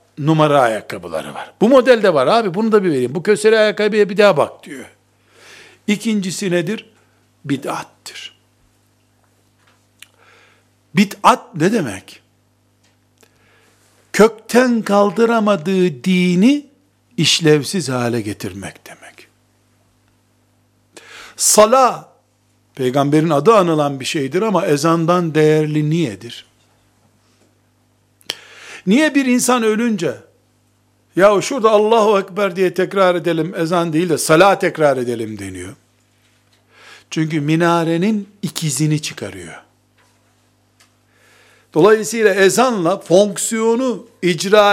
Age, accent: 60-79, native